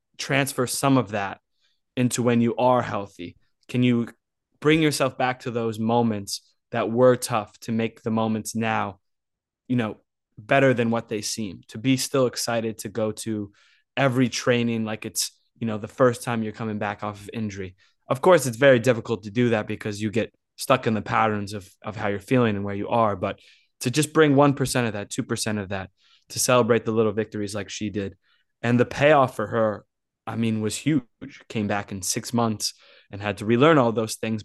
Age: 20-39